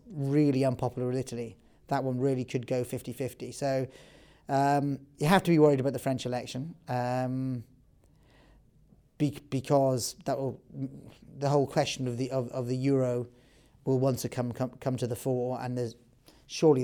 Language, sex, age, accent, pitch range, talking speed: English, male, 30-49, British, 125-140 Hz, 165 wpm